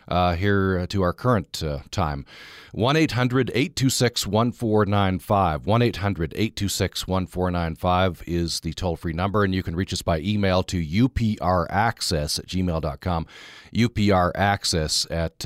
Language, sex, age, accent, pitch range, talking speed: English, male, 40-59, American, 95-125 Hz, 100 wpm